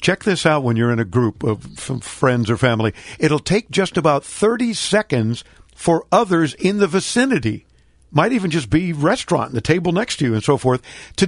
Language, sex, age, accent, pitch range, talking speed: English, male, 50-69, American, 130-180 Hz, 195 wpm